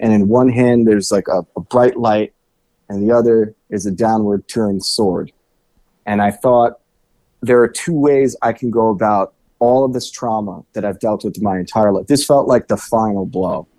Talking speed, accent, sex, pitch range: 200 wpm, American, male, 105-125 Hz